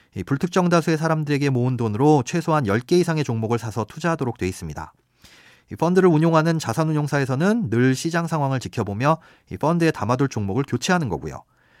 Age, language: 40-59, Korean